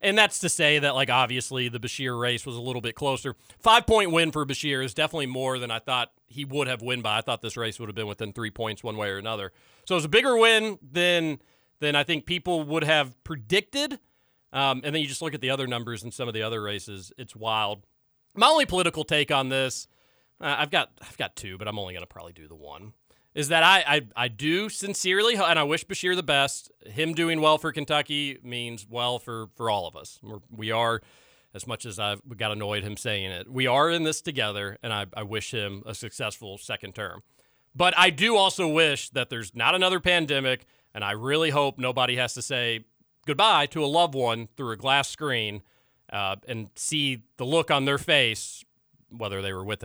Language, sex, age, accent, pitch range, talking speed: English, male, 40-59, American, 110-155 Hz, 225 wpm